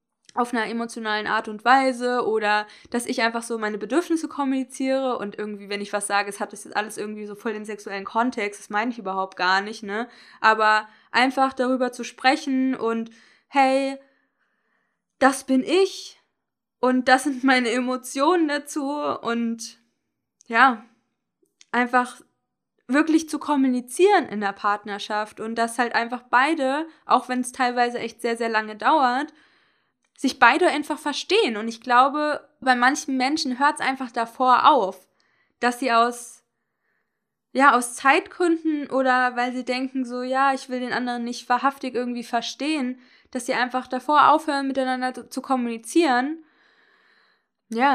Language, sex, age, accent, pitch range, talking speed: German, female, 20-39, German, 230-270 Hz, 150 wpm